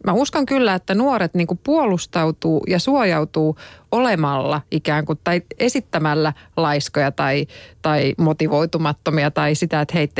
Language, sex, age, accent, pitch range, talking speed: Finnish, female, 30-49, native, 155-210 Hz, 125 wpm